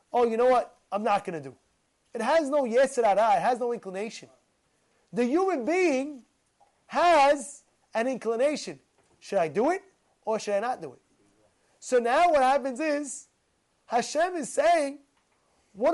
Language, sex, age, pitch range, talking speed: English, male, 30-49, 220-305 Hz, 165 wpm